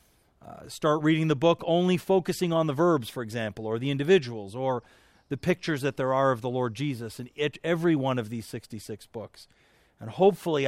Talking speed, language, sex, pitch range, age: 195 wpm, English, male, 130-165 Hz, 40-59